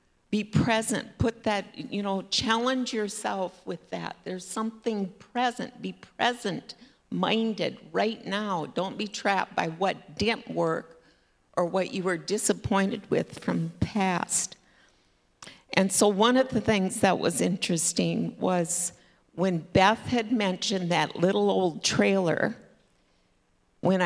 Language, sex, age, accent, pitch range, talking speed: English, female, 50-69, American, 170-210 Hz, 130 wpm